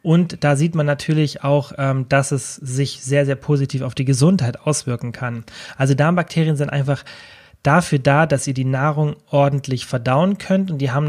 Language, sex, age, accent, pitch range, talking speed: German, male, 30-49, German, 130-155 Hz, 180 wpm